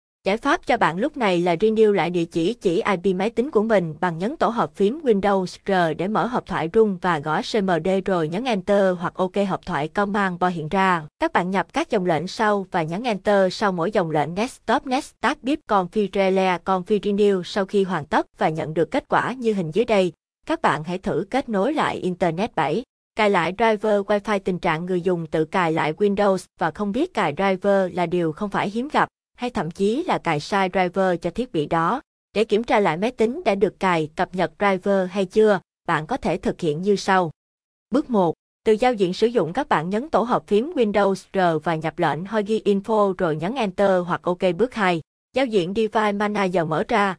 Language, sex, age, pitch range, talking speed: Vietnamese, female, 20-39, 180-215 Hz, 225 wpm